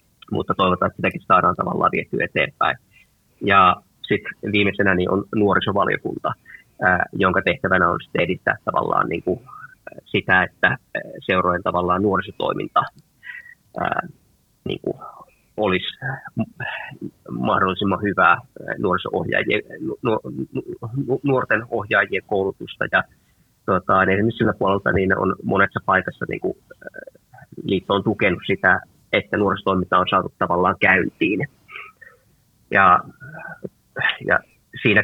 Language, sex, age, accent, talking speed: Finnish, male, 30-49, native, 100 wpm